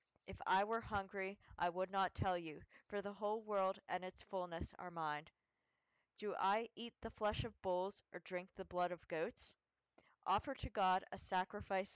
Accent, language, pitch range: American, English, 180-210 Hz